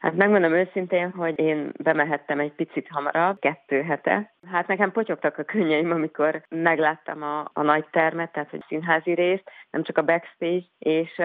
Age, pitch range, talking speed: 30-49, 150-175 Hz, 165 wpm